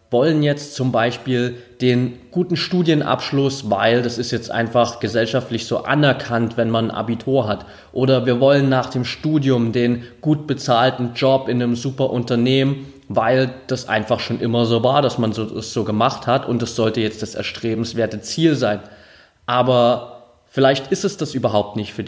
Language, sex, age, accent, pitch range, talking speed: German, male, 20-39, German, 120-145 Hz, 180 wpm